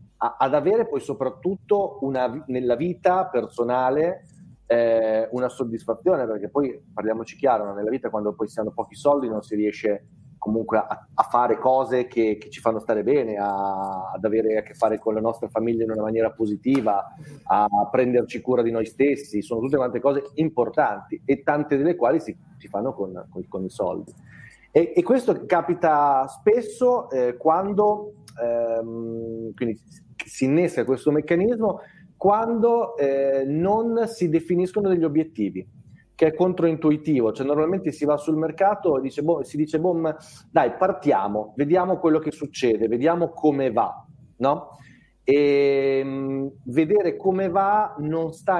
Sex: male